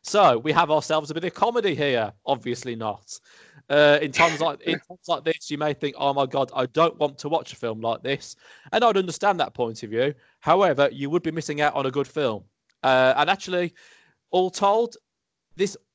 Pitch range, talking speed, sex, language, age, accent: 125-160 Hz, 220 wpm, male, English, 20-39, British